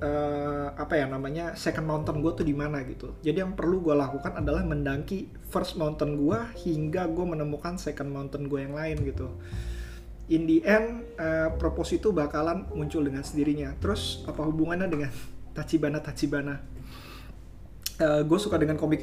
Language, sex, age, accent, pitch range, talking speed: Indonesian, male, 20-39, native, 135-160 Hz, 155 wpm